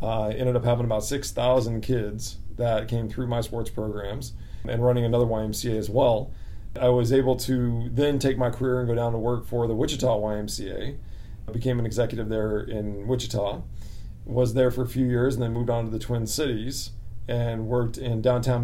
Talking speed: 195 wpm